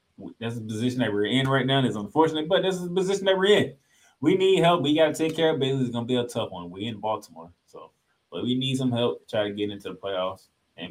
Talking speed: 280 wpm